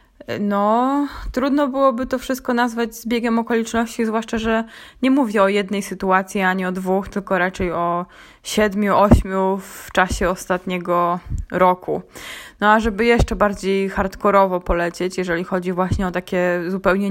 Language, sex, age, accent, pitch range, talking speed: Polish, female, 20-39, native, 185-220 Hz, 140 wpm